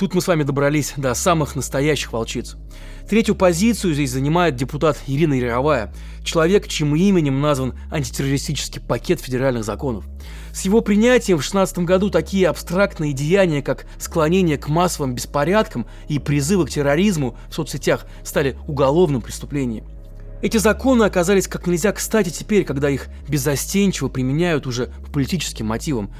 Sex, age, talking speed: male, 20-39, 140 wpm